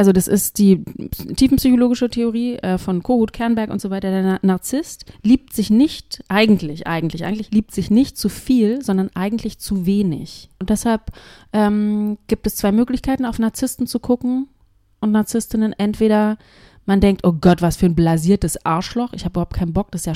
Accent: German